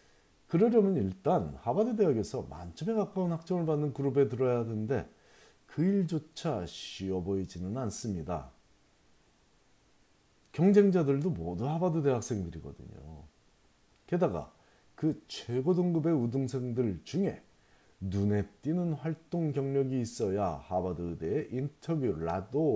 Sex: male